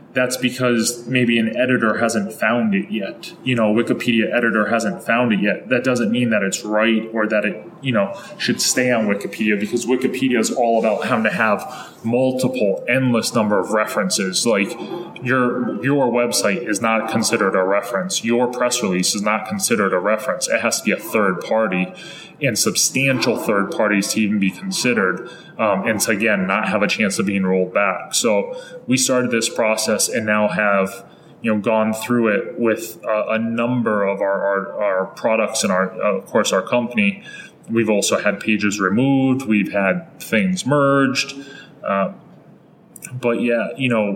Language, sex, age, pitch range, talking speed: English, male, 20-39, 105-130 Hz, 180 wpm